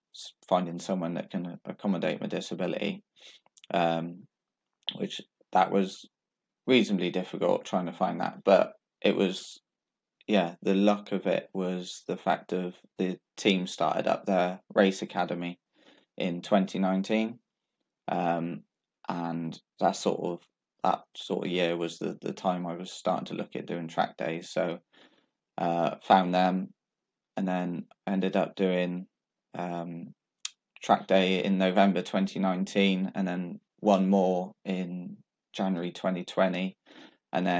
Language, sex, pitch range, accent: English, male, 90-95 Hz, British